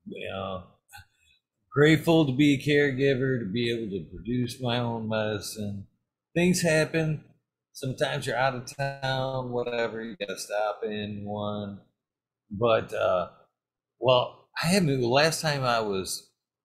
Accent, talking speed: American, 135 wpm